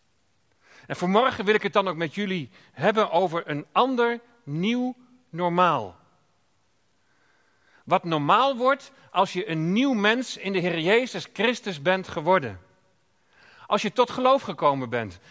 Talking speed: 140 wpm